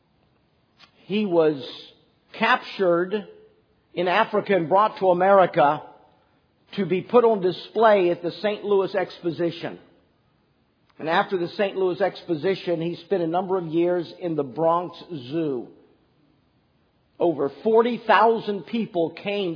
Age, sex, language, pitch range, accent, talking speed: 50-69, male, English, 165-225 Hz, American, 120 wpm